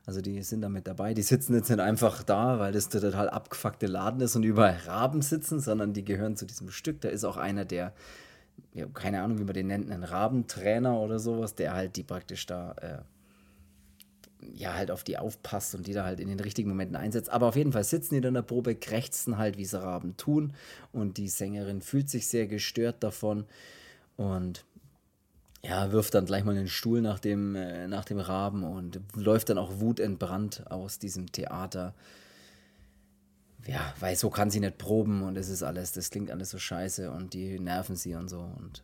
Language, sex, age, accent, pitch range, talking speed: German, male, 30-49, German, 95-120 Hz, 200 wpm